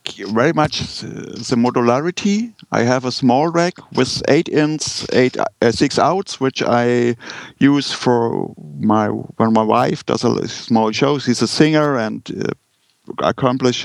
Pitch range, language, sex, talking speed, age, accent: 115-140 Hz, English, male, 150 wpm, 50-69, German